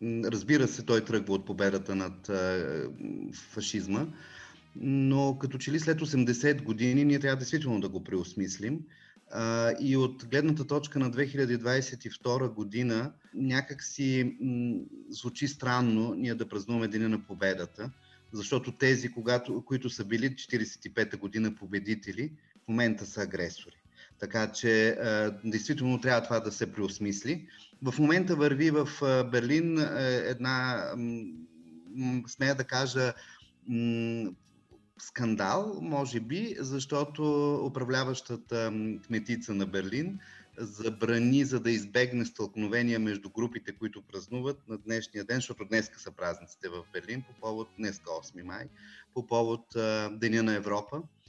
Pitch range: 110-135 Hz